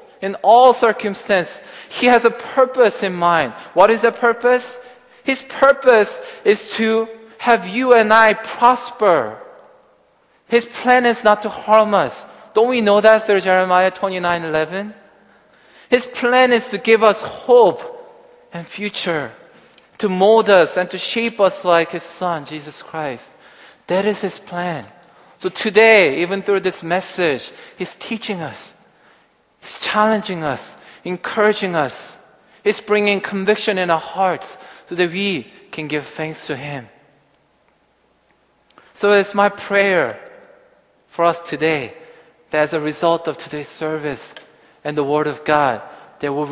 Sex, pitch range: male, 165-230 Hz